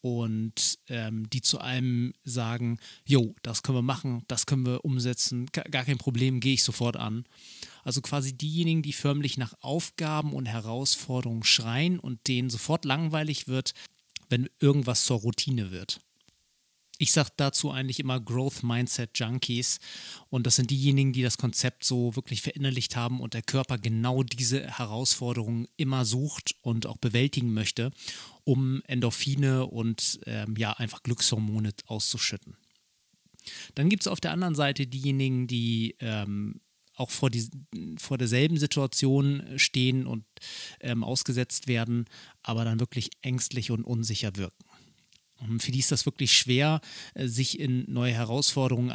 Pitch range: 120-140 Hz